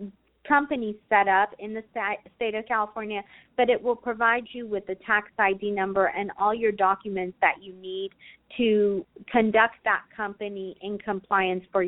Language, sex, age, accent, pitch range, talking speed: English, female, 30-49, American, 185-220 Hz, 160 wpm